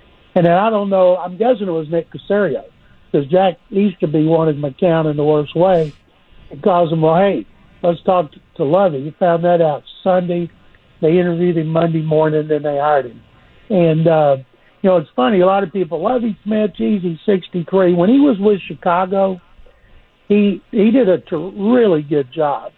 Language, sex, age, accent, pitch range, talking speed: English, male, 60-79, American, 160-190 Hz, 200 wpm